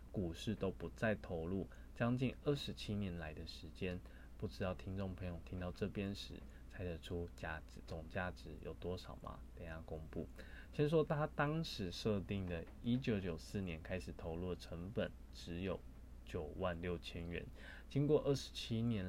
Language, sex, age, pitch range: Chinese, male, 20-39, 80-110 Hz